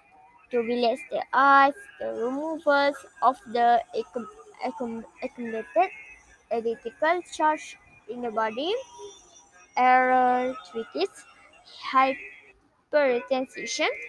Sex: female